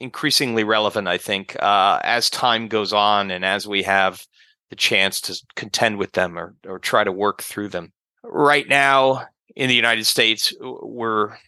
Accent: American